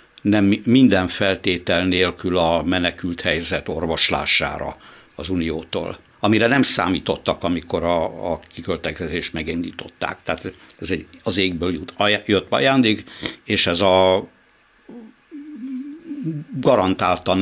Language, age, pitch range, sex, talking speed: Hungarian, 60-79, 85-105 Hz, male, 105 wpm